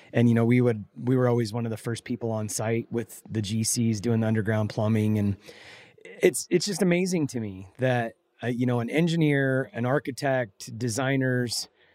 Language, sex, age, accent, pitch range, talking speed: English, male, 30-49, American, 115-140 Hz, 190 wpm